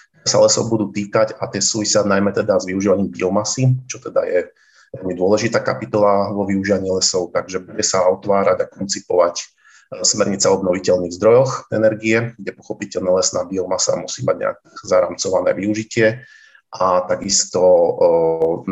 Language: Slovak